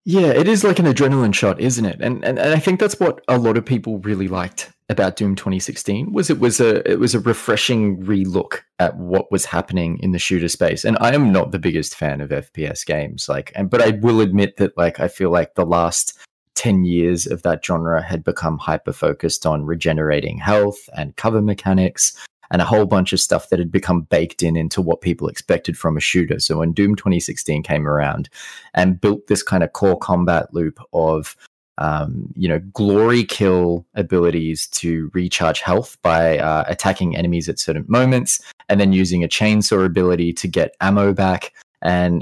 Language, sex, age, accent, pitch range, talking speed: English, male, 20-39, Australian, 85-105 Hz, 200 wpm